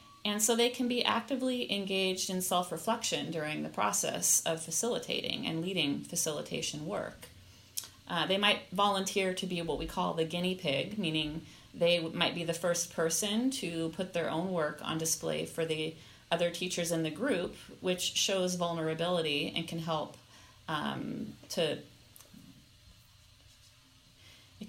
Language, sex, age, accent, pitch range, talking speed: Danish, female, 40-59, American, 160-185 Hz, 145 wpm